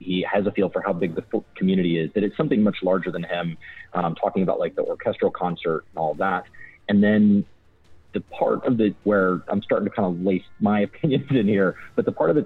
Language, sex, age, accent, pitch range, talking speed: English, male, 30-49, American, 85-100 Hz, 235 wpm